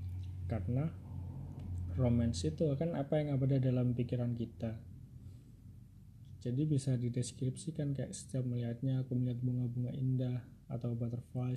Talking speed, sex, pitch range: 115 wpm, male, 105-130 Hz